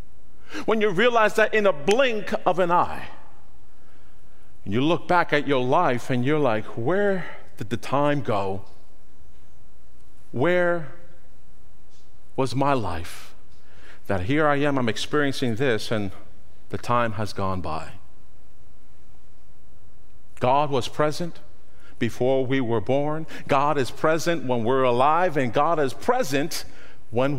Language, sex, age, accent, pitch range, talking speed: English, male, 50-69, American, 95-160 Hz, 130 wpm